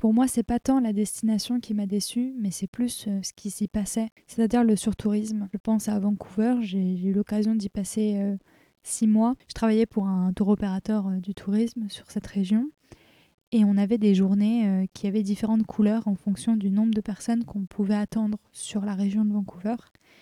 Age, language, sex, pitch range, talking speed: 20-39, French, female, 200-220 Hz, 195 wpm